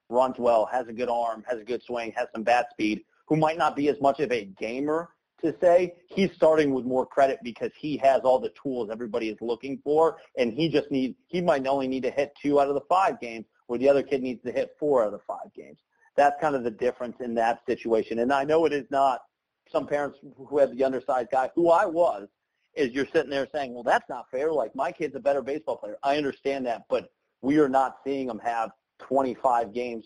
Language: English